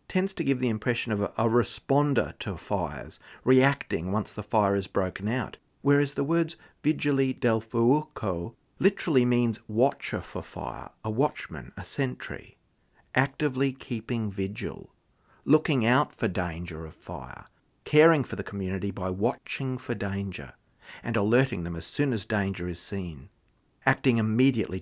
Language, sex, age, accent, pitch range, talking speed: English, male, 50-69, Australian, 95-135 Hz, 145 wpm